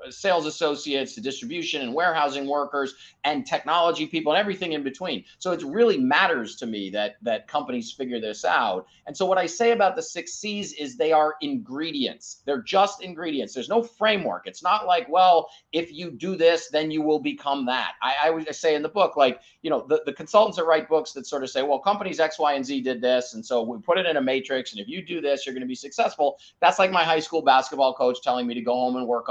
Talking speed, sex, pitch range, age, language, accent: 240 wpm, male, 135-190 Hz, 30-49, English, American